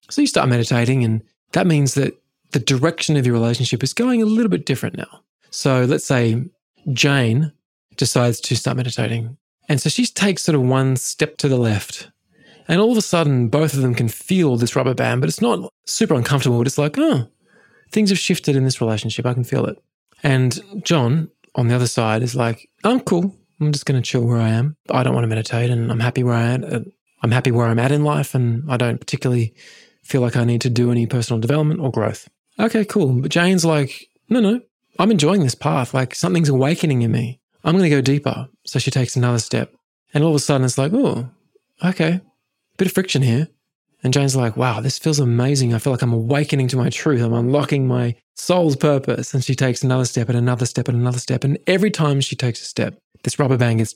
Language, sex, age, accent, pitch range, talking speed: English, male, 20-39, Australian, 120-155 Hz, 220 wpm